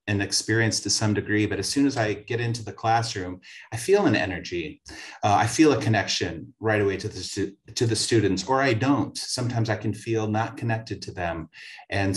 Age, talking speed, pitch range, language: 30-49, 205 wpm, 95-115 Hz, English